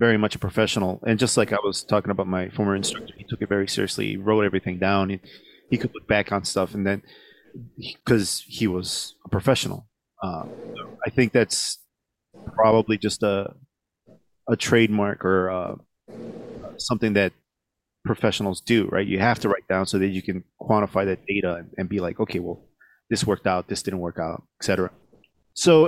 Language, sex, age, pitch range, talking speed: English, male, 30-49, 100-130 Hz, 185 wpm